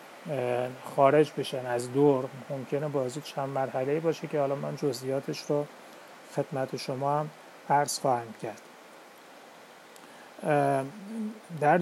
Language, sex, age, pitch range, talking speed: Persian, male, 30-49, 130-150 Hz, 100 wpm